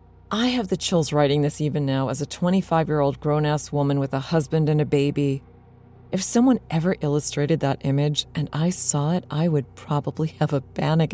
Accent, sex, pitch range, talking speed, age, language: American, female, 135-170 Hz, 190 wpm, 30-49, English